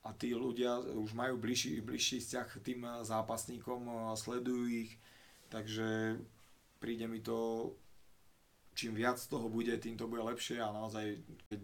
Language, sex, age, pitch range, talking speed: Slovak, male, 30-49, 100-115 Hz, 150 wpm